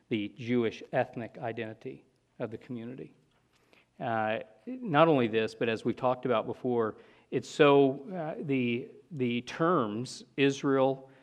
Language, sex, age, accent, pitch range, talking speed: English, male, 50-69, American, 115-145 Hz, 130 wpm